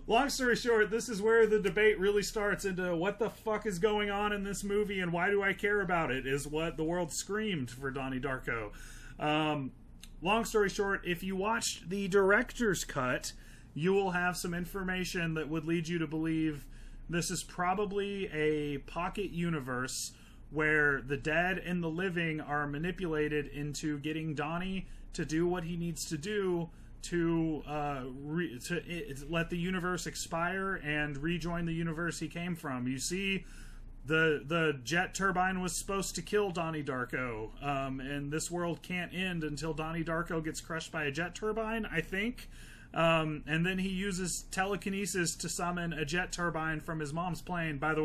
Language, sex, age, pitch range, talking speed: English, male, 30-49, 150-190 Hz, 175 wpm